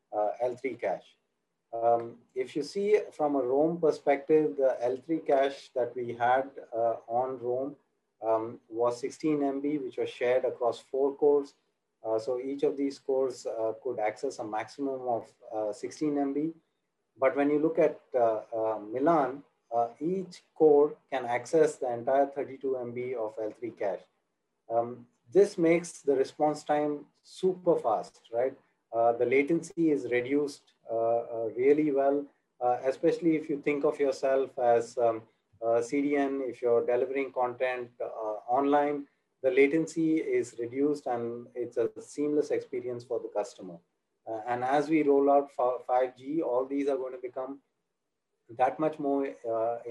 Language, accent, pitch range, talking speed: English, Indian, 120-150 Hz, 155 wpm